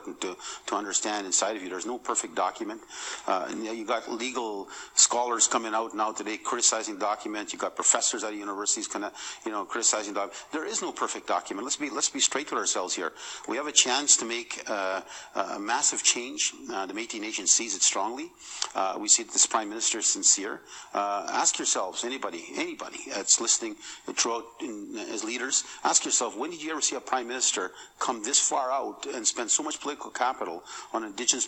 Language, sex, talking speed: English, male, 200 wpm